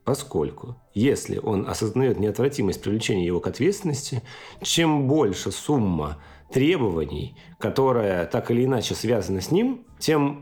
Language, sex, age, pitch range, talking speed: Russian, male, 40-59, 105-145 Hz, 120 wpm